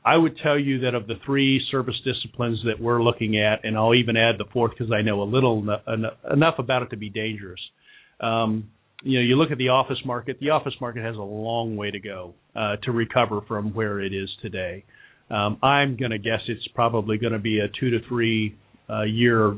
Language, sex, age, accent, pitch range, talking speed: English, male, 40-59, American, 110-140 Hz, 225 wpm